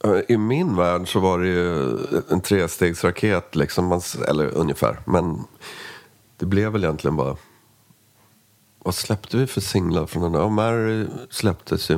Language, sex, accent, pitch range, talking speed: English, male, Swedish, 85-105 Hz, 140 wpm